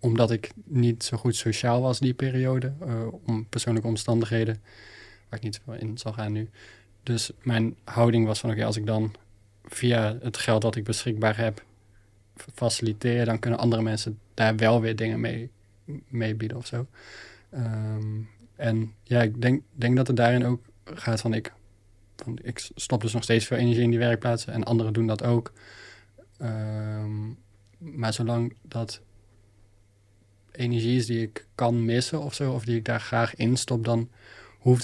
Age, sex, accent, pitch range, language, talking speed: 20-39, male, Dutch, 110-120 Hz, Dutch, 165 wpm